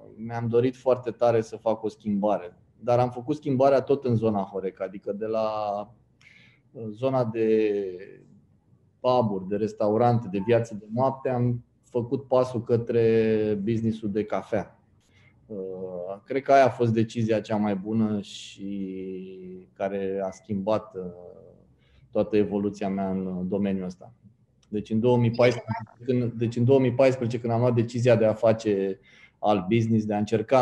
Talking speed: 135 wpm